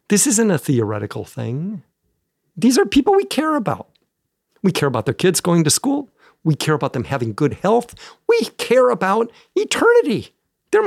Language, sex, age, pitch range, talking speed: English, male, 50-69, 115-185 Hz, 170 wpm